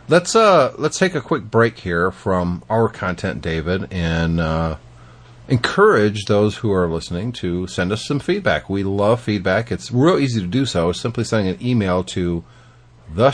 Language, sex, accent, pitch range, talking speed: English, male, American, 90-120 Hz, 175 wpm